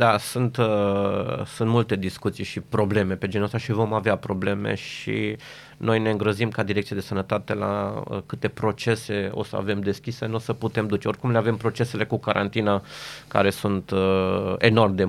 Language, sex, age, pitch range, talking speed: Romanian, male, 30-49, 105-125 Hz, 170 wpm